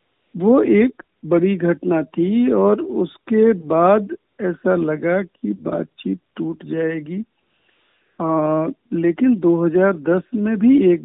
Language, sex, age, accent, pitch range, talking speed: Hindi, male, 60-79, native, 165-220 Hz, 105 wpm